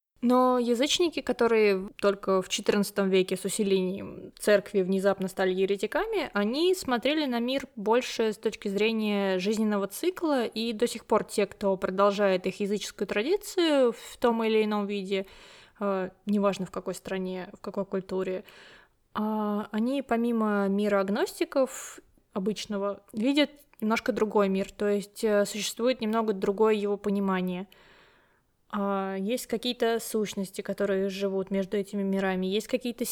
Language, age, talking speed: Russian, 20-39, 130 wpm